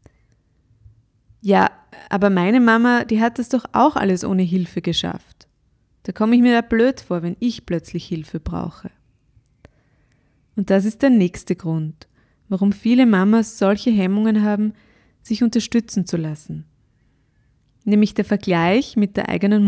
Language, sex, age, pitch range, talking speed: German, female, 20-39, 165-230 Hz, 145 wpm